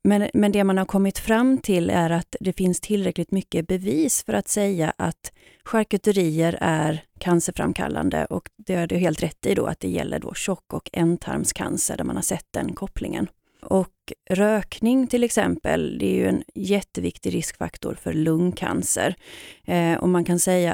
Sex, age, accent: female, 30-49, native